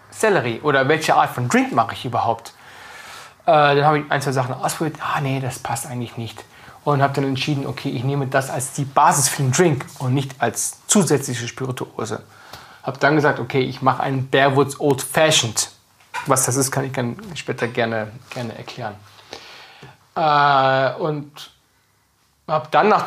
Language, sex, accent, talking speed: German, male, German, 175 wpm